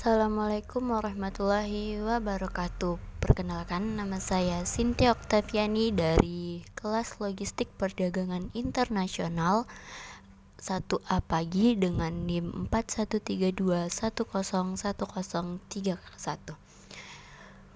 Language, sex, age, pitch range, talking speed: Indonesian, female, 20-39, 180-210 Hz, 60 wpm